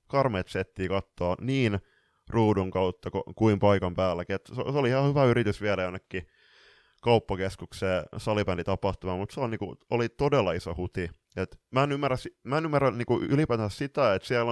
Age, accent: 20-39, native